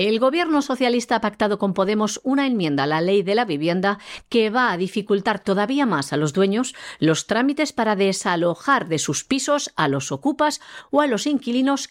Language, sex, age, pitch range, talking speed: Spanish, female, 50-69, 180-270 Hz, 190 wpm